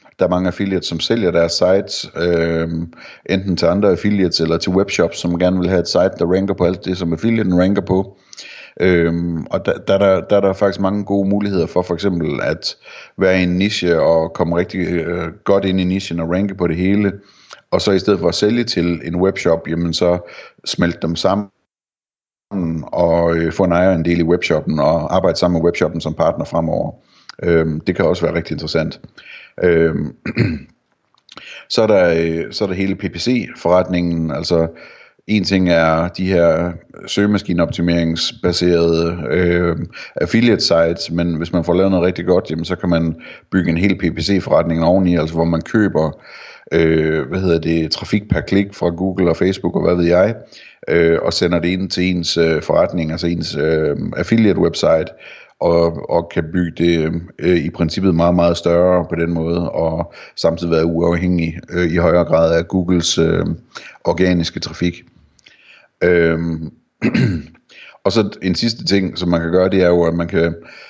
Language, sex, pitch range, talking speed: Danish, male, 85-95 Hz, 175 wpm